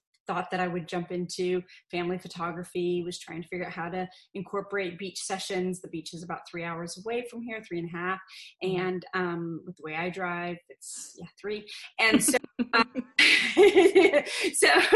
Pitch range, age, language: 175-200 Hz, 30-49, English